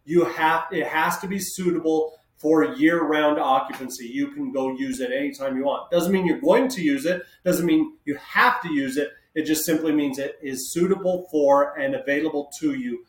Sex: male